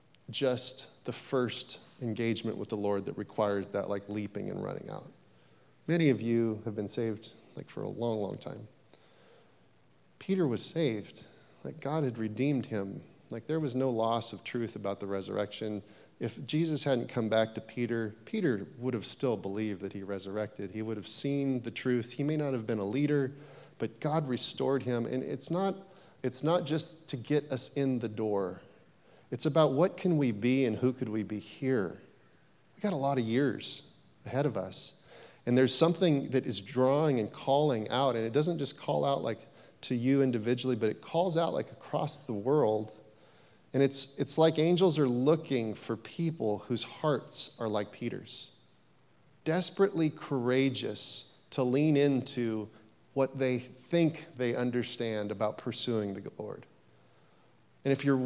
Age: 30-49